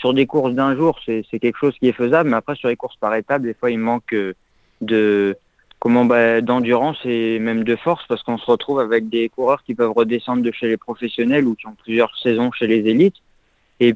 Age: 20-39